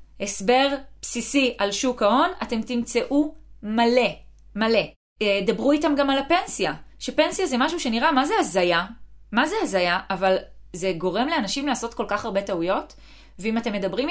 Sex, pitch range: female, 195-270 Hz